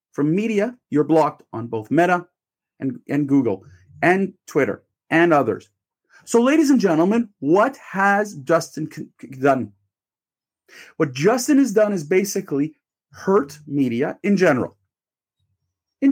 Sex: male